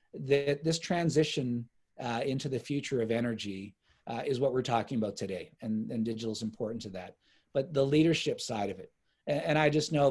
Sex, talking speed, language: male, 200 wpm, English